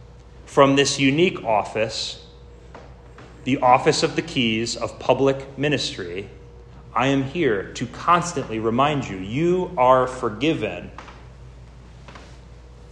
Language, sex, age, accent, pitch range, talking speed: English, male, 30-49, American, 90-145 Hz, 100 wpm